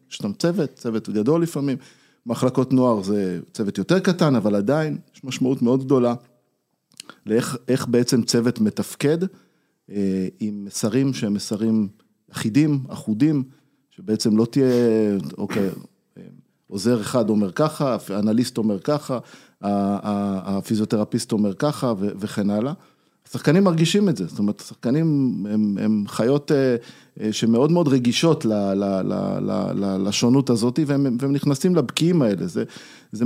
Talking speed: 130 wpm